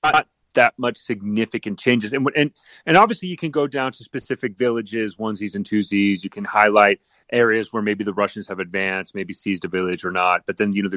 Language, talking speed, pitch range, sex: English, 220 wpm, 100-140 Hz, male